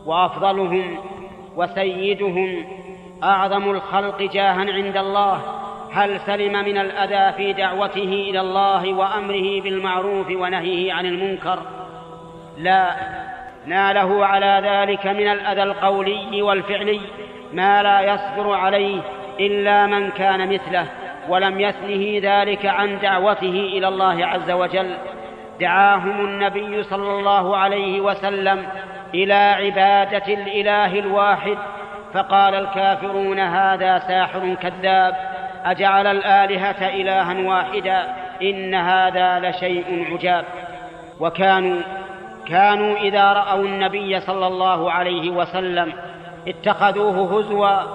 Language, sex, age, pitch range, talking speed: Arabic, male, 40-59, 185-200 Hz, 100 wpm